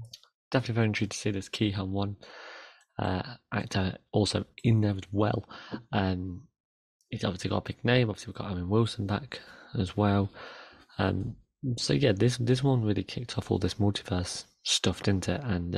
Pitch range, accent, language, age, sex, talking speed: 95-120 Hz, British, English, 30-49, male, 175 wpm